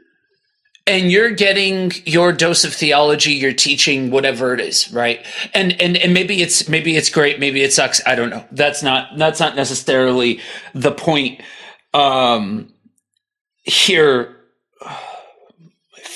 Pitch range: 145-205 Hz